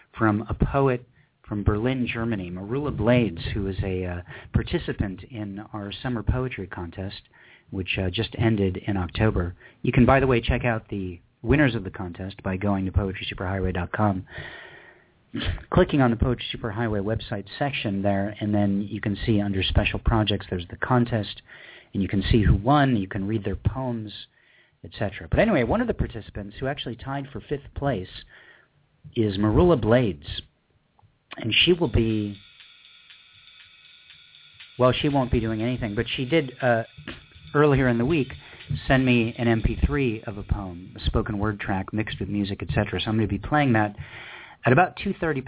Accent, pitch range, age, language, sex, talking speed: American, 100-125 Hz, 40-59, English, male, 170 wpm